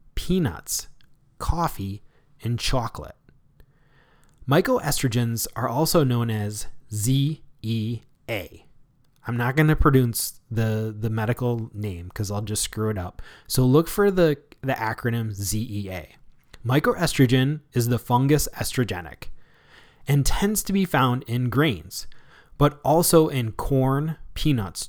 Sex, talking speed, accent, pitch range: male, 120 wpm, American, 110-145 Hz